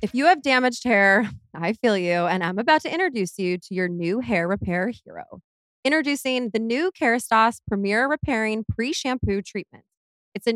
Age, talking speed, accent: 20-39, 170 wpm, American